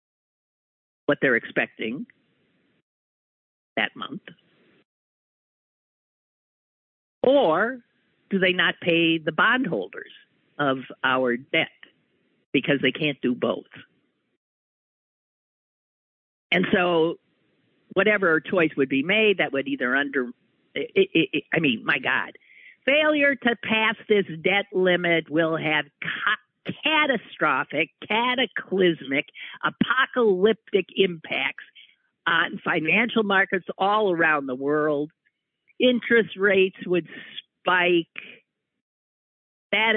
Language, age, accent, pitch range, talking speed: English, 50-69, American, 155-205 Hz, 90 wpm